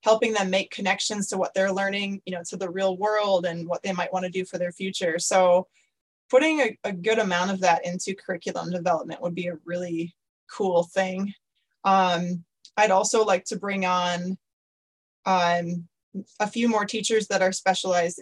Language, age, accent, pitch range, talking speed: English, 20-39, American, 185-225 Hz, 180 wpm